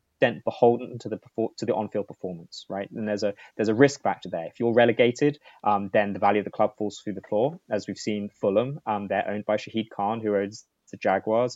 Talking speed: 230 wpm